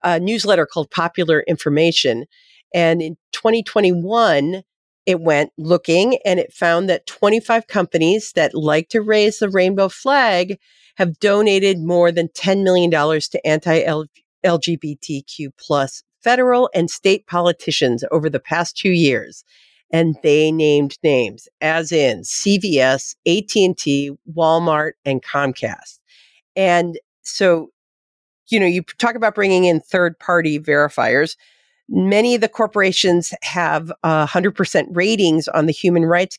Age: 50-69